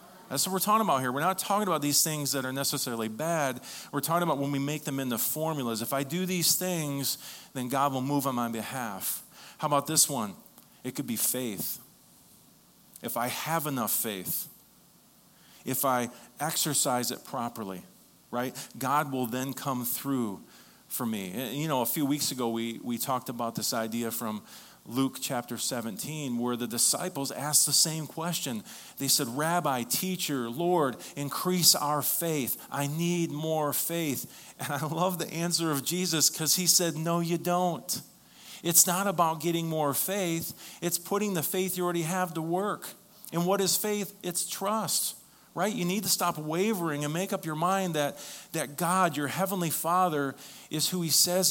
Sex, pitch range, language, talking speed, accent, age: male, 135-175 Hz, English, 180 wpm, American, 40-59